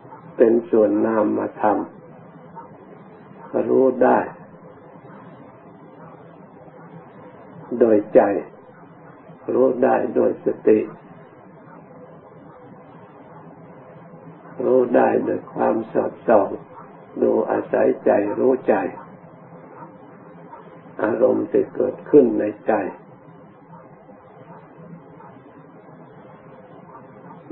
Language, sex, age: Thai, male, 60-79